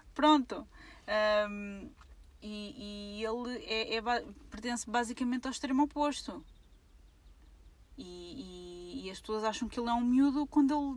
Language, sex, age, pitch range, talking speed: Portuguese, female, 20-39, 200-255 Hz, 110 wpm